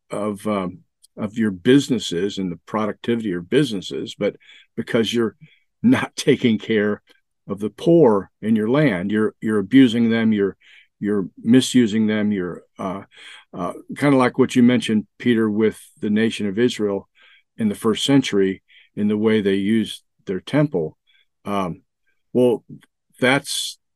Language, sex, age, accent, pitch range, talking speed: English, male, 50-69, American, 100-130 Hz, 150 wpm